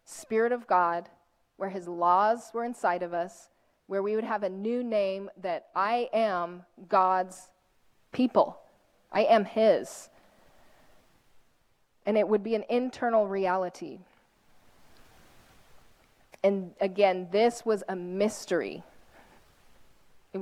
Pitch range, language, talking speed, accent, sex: 185-225 Hz, English, 115 wpm, American, female